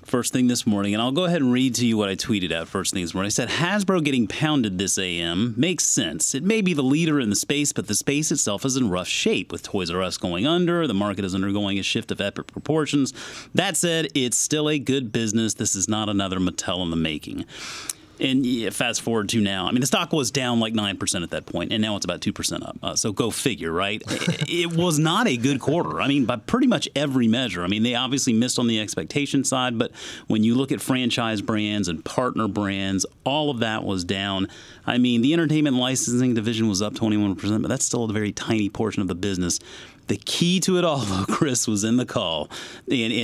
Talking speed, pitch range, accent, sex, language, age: 235 wpm, 95-130 Hz, American, male, English, 30-49